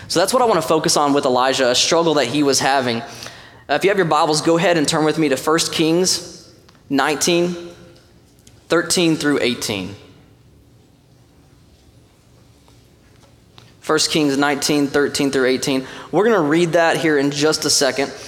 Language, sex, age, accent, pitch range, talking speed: English, male, 20-39, American, 135-175 Hz, 165 wpm